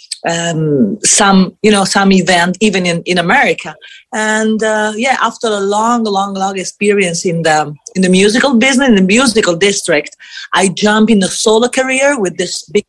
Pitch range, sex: 180-225 Hz, female